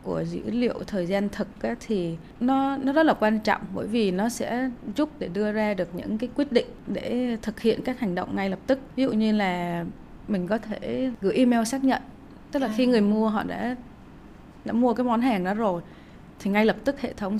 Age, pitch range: 20-39, 200-245 Hz